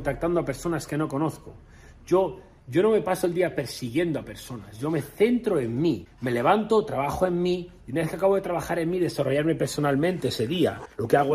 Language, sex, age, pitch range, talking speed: Spanish, male, 40-59, 125-165 Hz, 220 wpm